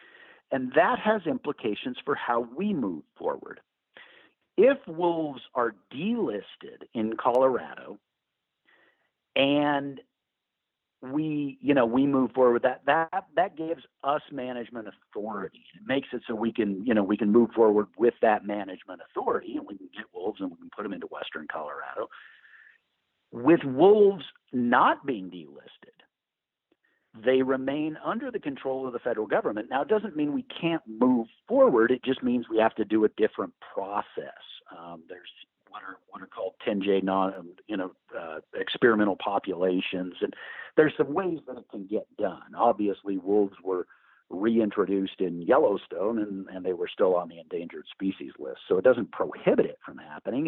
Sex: male